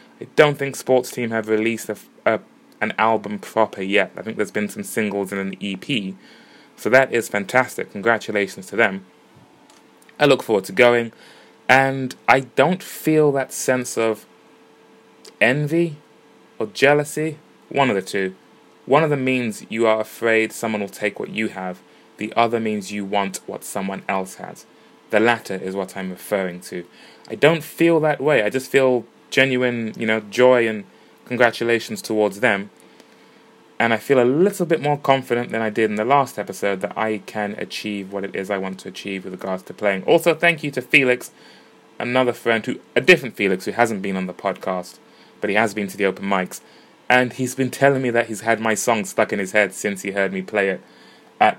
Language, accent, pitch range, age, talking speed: English, British, 100-130 Hz, 20-39, 195 wpm